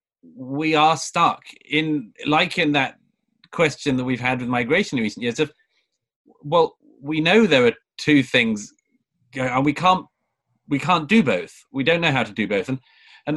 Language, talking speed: English, 180 wpm